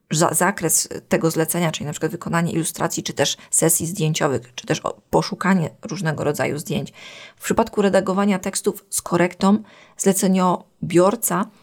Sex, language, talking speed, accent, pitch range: female, Polish, 130 wpm, native, 175-200 Hz